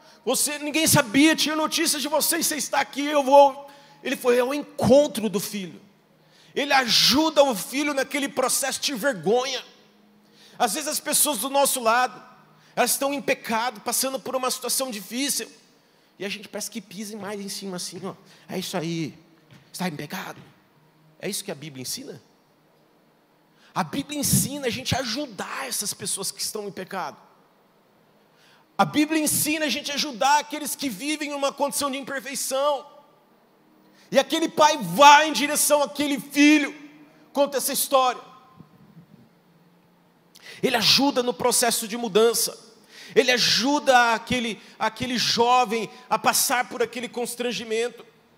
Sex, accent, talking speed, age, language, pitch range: male, Brazilian, 150 wpm, 50-69, Portuguese, 200-280 Hz